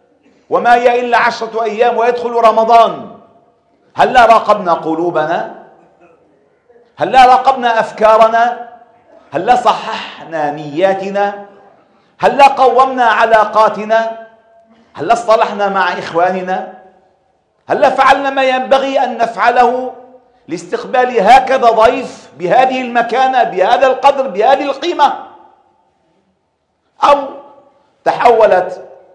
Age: 50-69